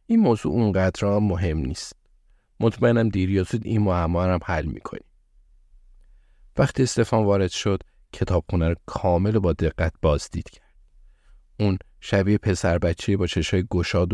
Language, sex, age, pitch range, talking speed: Persian, male, 50-69, 85-105 Hz, 125 wpm